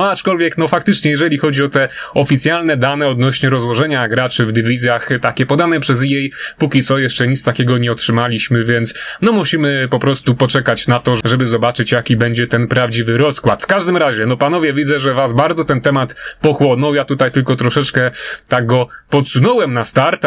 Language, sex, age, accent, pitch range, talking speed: Polish, male, 30-49, native, 125-150 Hz, 185 wpm